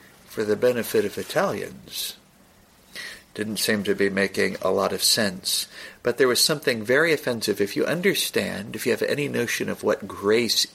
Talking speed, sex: 175 wpm, male